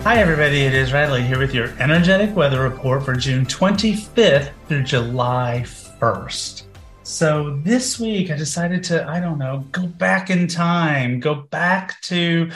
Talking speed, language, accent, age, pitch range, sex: 160 wpm, English, American, 30-49, 135-170 Hz, male